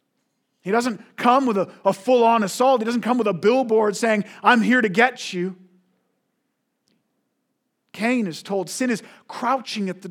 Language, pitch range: English, 190-240 Hz